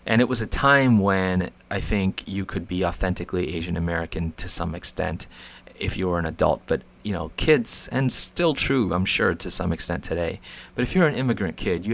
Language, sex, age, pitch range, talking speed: English, male, 30-49, 85-105 Hz, 210 wpm